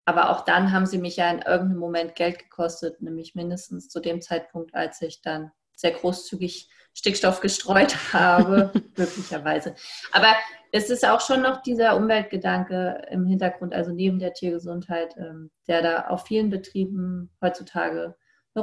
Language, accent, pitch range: German, German, 165-185 Hz